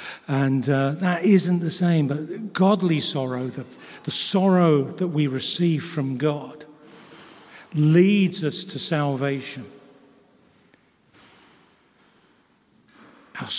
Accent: British